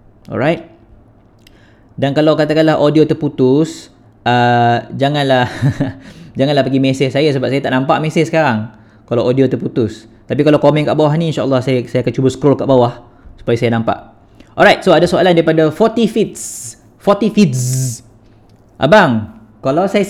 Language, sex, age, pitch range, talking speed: Malay, male, 20-39, 115-160 Hz, 150 wpm